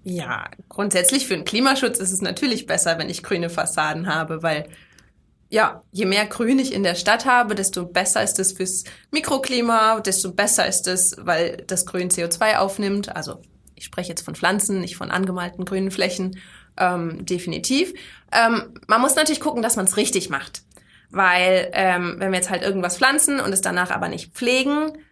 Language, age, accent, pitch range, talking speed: German, 20-39, German, 185-235 Hz, 180 wpm